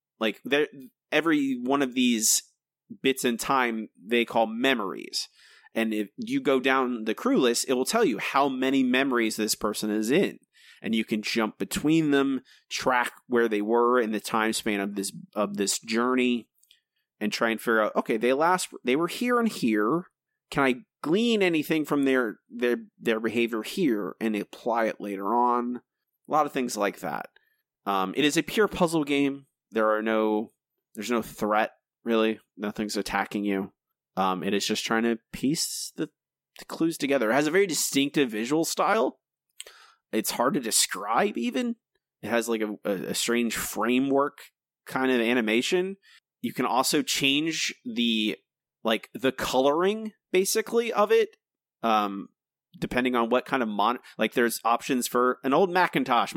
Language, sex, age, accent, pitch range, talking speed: English, male, 30-49, American, 110-150 Hz, 170 wpm